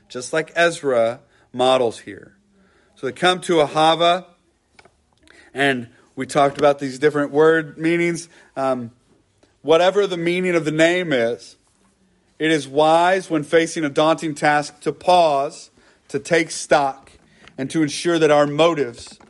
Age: 40-59